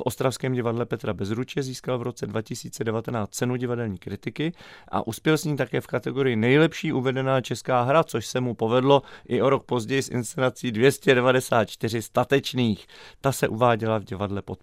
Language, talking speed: Czech, 170 wpm